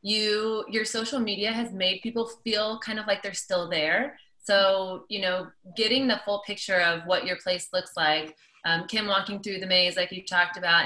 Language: English